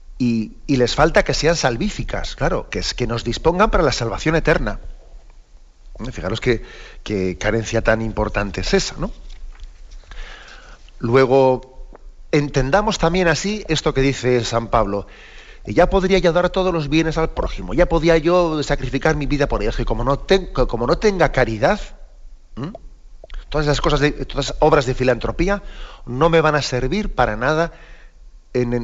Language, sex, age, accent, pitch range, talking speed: Spanish, male, 40-59, Spanish, 110-150 Hz, 160 wpm